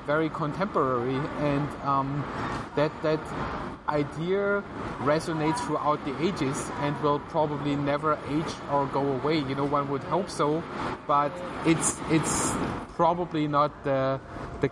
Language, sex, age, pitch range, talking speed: English, male, 30-49, 135-160 Hz, 130 wpm